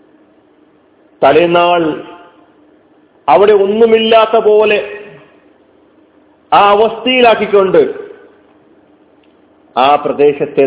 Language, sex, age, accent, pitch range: Malayalam, male, 40-59, native, 165-215 Hz